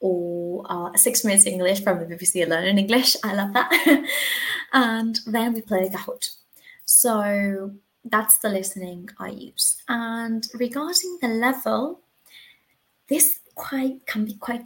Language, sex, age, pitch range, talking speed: English, female, 20-39, 195-260 Hz, 145 wpm